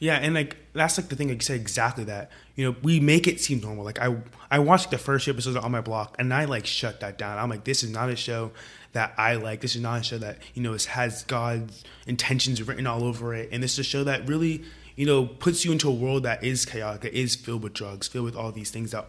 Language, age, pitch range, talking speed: English, 20-39, 115-140 Hz, 275 wpm